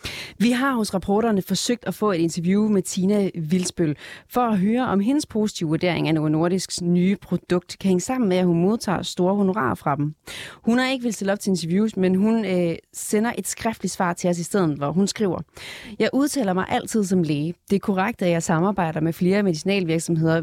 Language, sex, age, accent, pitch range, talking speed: Danish, female, 30-49, native, 175-215 Hz, 210 wpm